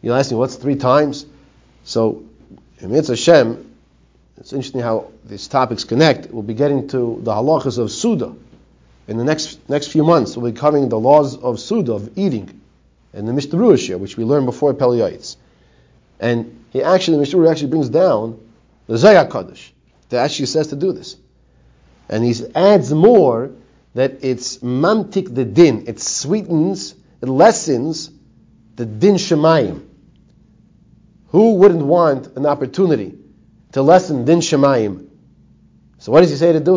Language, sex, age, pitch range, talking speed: English, male, 40-59, 115-160 Hz, 155 wpm